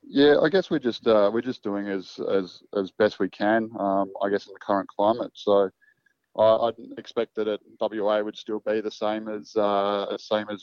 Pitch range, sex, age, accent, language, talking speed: 100-110 Hz, male, 20-39, Australian, English, 220 wpm